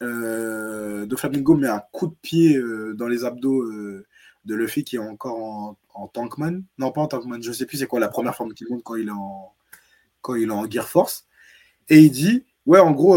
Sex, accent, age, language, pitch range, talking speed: male, French, 20-39, French, 120-165 Hz, 230 wpm